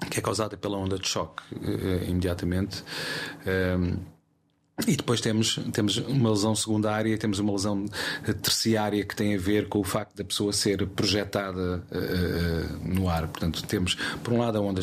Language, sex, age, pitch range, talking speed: Portuguese, male, 30-49, 90-110 Hz, 175 wpm